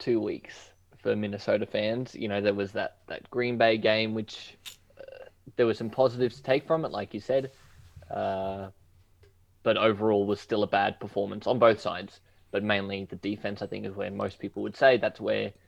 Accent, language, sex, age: Australian, English, male, 20-39